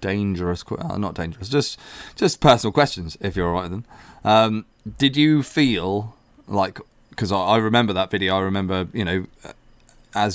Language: English